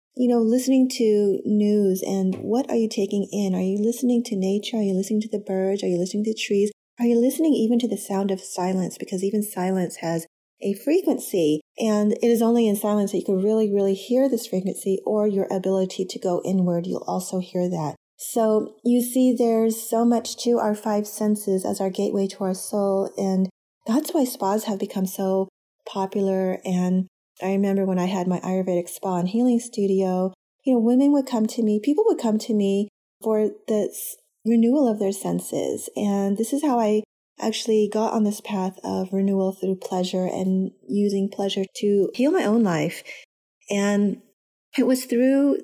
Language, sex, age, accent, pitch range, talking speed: English, female, 30-49, American, 195-230 Hz, 190 wpm